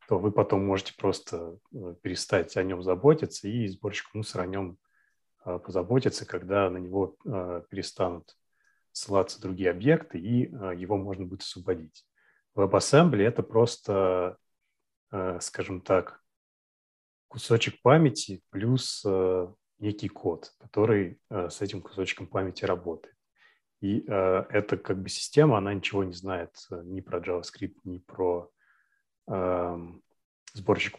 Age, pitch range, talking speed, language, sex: 30-49, 90-110 Hz, 115 wpm, Russian, male